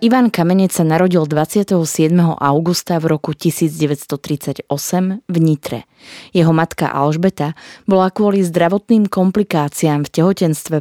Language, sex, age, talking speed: Slovak, female, 20-39, 110 wpm